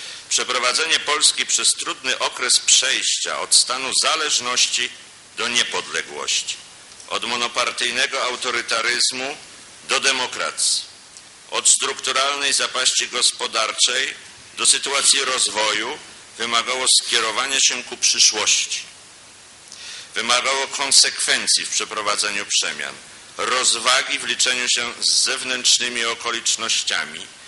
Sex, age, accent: male, 50-69, native